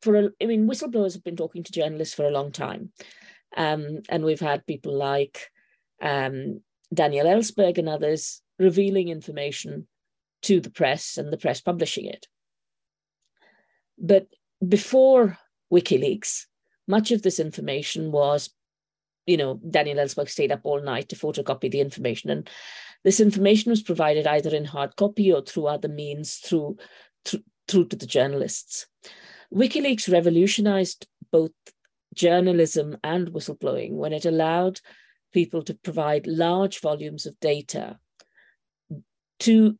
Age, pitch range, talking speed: 50-69, 150-195 Hz, 135 wpm